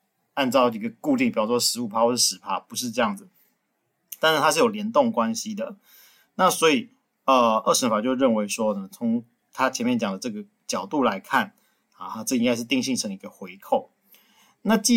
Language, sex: Chinese, male